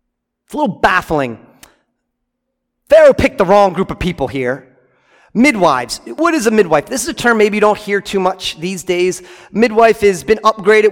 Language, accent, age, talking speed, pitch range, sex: English, American, 40-59, 180 wpm, 170-235 Hz, male